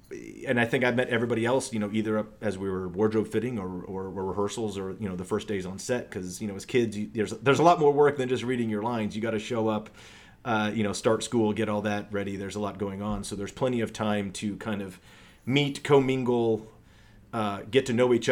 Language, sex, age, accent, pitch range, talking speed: English, male, 30-49, American, 100-115 Hz, 260 wpm